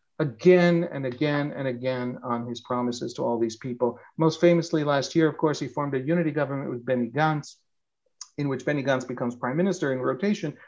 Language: English